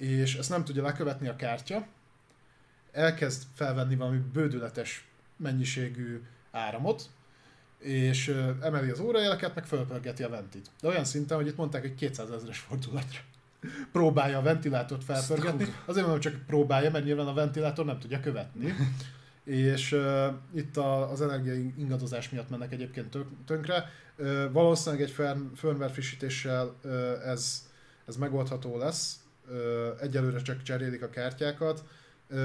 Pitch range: 125-145 Hz